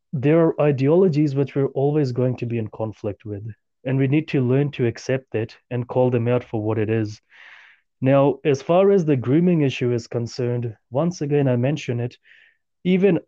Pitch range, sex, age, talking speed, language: 120-150 Hz, male, 30-49, 195 wpm, English